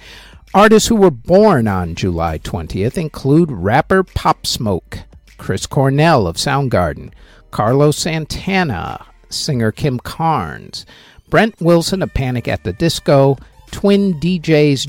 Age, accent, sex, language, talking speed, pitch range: 50-69, American, male, English, 115 wpm, 105-160 Hz